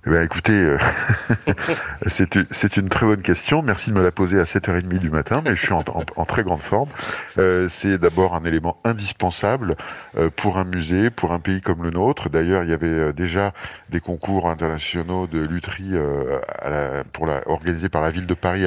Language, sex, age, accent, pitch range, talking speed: French, male, 50-69, French, 80-95 Hz, 215 wpm